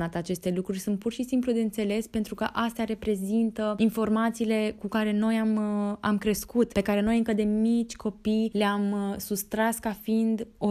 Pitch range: 180-215 Hz